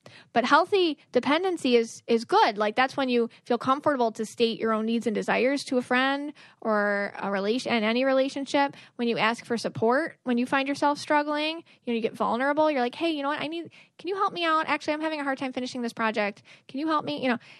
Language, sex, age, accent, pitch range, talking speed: English, female, 10-29, American, 220-270 Hz, 240 wpm